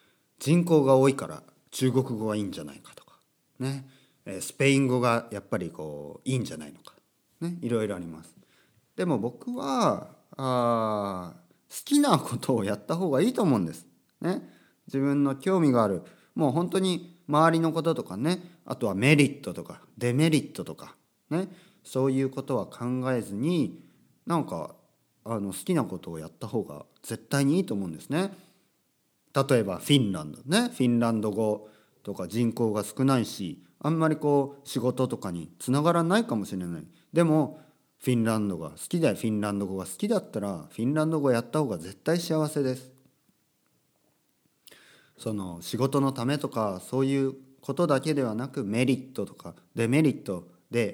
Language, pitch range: Japanese, 110-150 Hz